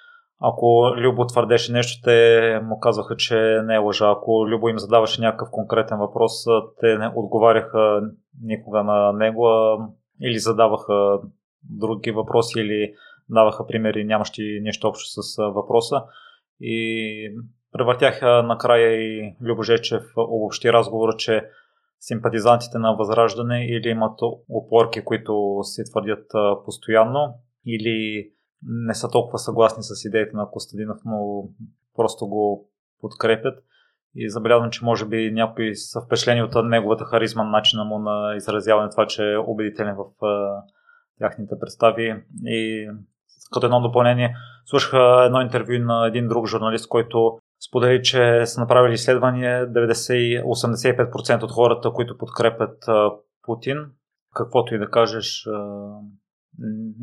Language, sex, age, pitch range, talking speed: Bulgarian, male, 20-39, 110-120 Hz, 125 wpm